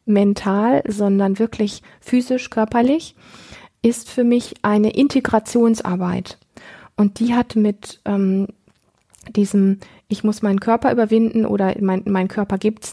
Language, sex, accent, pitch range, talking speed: German, female, German, 195-225 Hz, 120 wpm